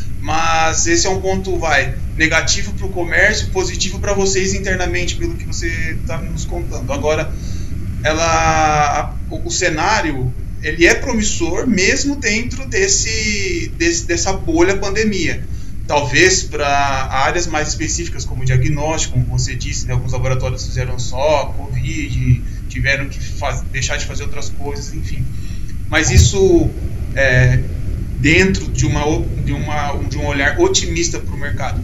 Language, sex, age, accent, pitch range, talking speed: Portuguese, male, 20-39, Brazilian, 100-140 Hz, 145 wpm